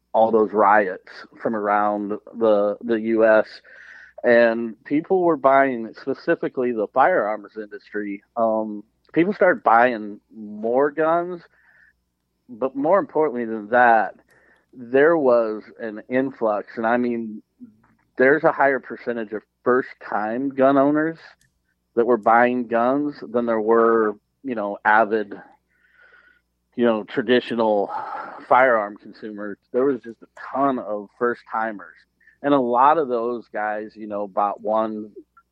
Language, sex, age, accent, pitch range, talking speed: English, male, 40-59, American, 105-135 Hz, 130 wpm